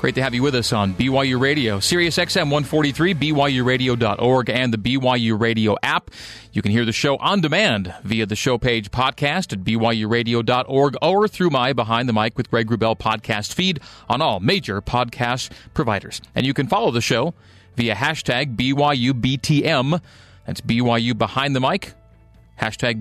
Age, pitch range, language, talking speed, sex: 40-59, 115-145 Hz, English, 165 wpm, male